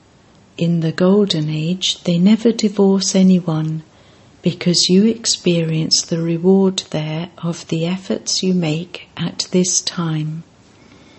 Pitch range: 160-185 Hz